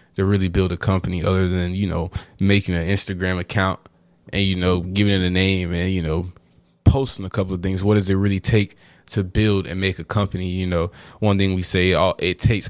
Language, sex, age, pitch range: English, male, 20-39, 90-105 Hz